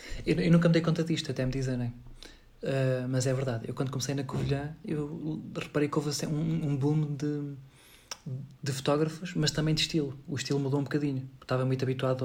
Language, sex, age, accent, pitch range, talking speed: Spanish, male, 20-39, Portuguese, 130-155 Hz, 200 wpm